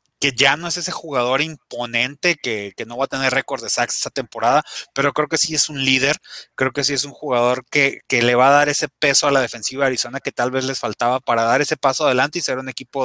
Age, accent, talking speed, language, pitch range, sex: 30-49, Mexican, 265 wpm, Spanish, 125-160 Hz, male